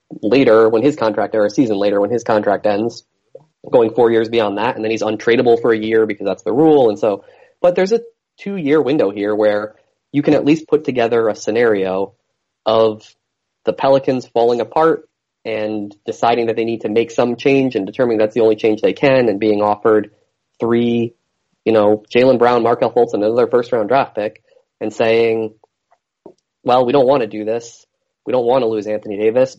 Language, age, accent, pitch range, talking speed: English, 20-39, American, 110-140 Hz, 205 wpm